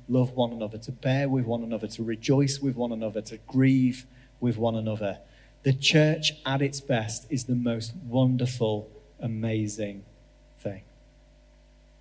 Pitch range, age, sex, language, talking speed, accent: 115-140 Hz, 30-49, male, English, 145 wpm, British